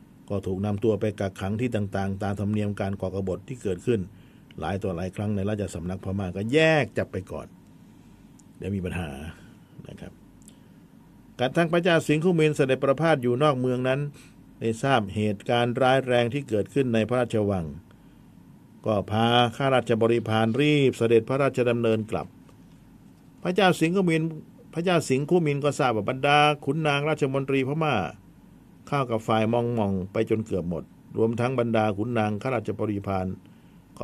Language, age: Thai, 60-79